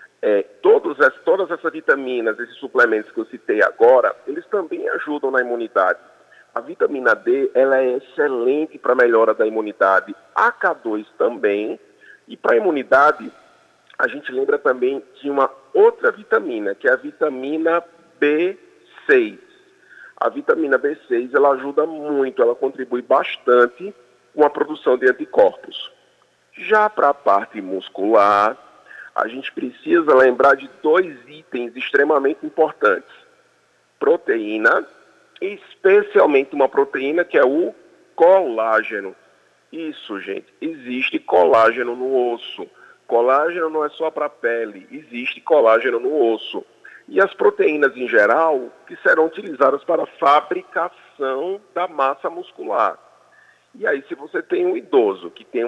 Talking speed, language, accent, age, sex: 135 wpm, Portuguese, Brazilian, 40-59, male